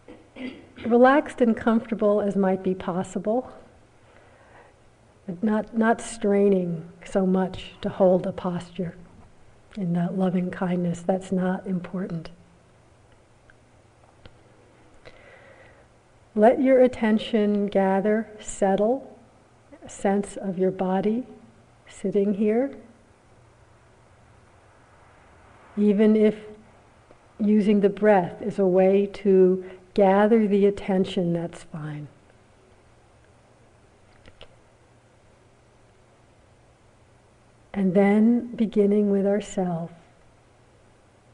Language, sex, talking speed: English, female, 80 wpm